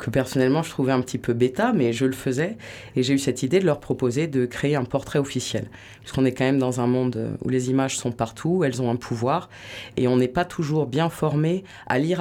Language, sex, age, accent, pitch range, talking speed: French, female, 20-39, French, 125-145 Hz, 250 wpm